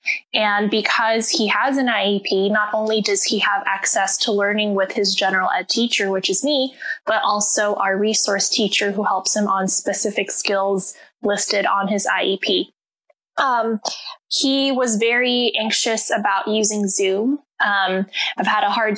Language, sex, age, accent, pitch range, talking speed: English, female, 10-29, American, 195-225 Hz, 160 wpm